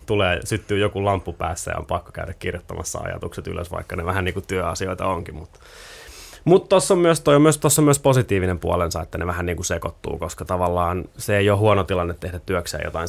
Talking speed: 190 wpm